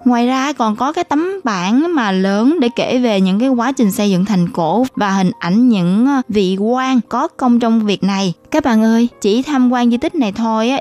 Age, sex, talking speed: 20-39, female, 230 wpm